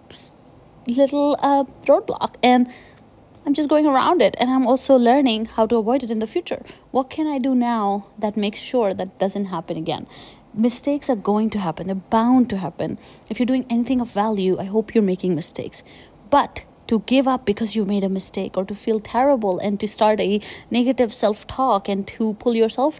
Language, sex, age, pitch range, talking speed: English, female, 30-49, 205-260 Hz, 195 wpm